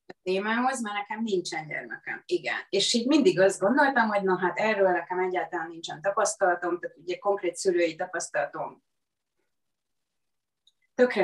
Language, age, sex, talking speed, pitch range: Hungarian, 30-49, female, 140 wpm, 175-220 Hz